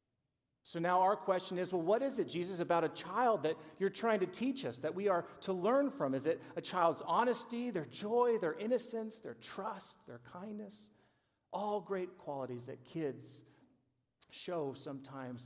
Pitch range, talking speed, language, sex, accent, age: 125-190 Hz, 175 wpm, English, male, American, 40-59